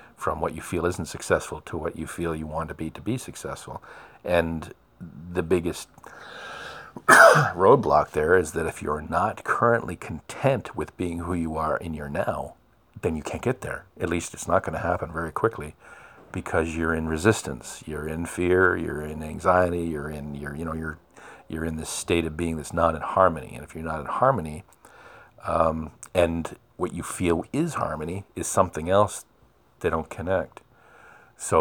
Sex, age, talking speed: male, 50-69, 185 wpm